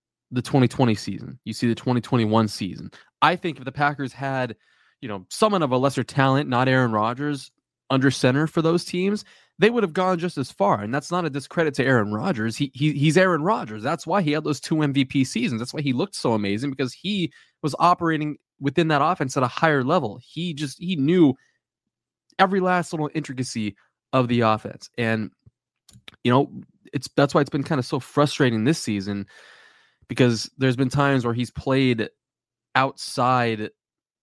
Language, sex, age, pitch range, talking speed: English, male, 20-39, 115-150 Hz, 190 wpm